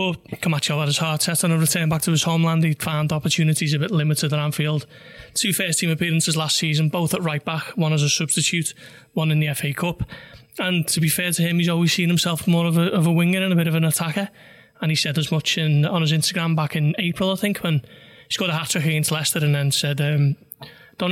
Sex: male